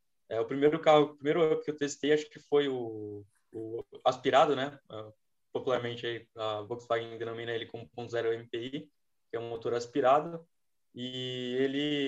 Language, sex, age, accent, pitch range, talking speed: Portuguese, male, 20-39, Brazilian, 115-140 Hz, 155 wpm